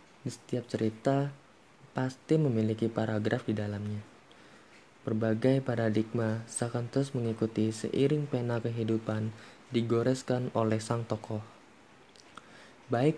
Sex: male